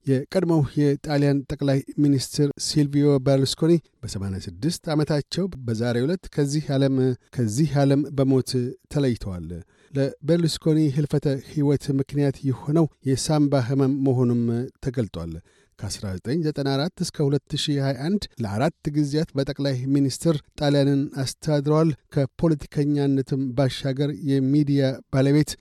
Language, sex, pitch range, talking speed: Amharic, male, 130-150 Hz, 85 wpm